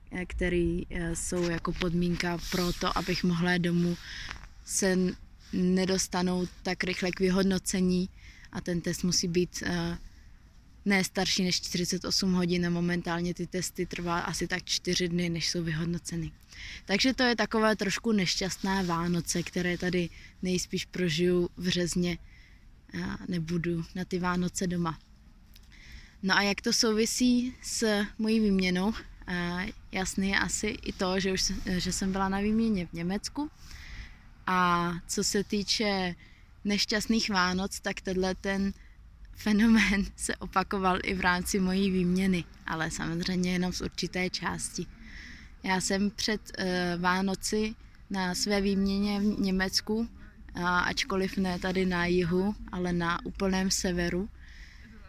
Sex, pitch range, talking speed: female, 175-195 Hz, 130 wpm